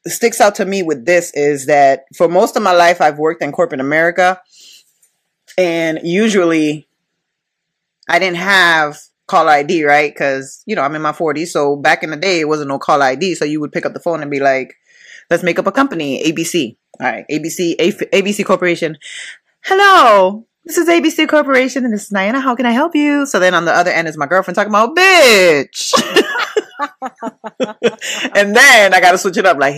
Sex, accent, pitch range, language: female, American, 160-220 Hz, English